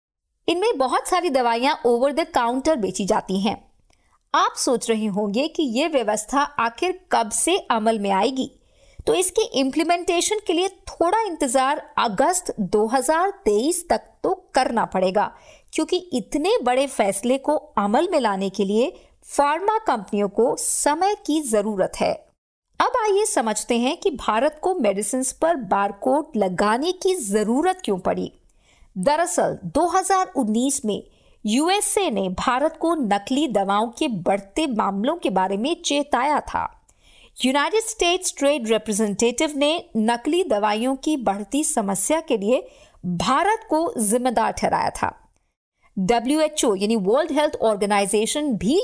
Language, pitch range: Hindi, 220-335 Hz